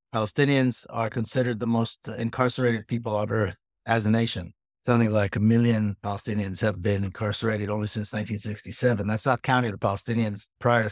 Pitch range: 105-120 Hz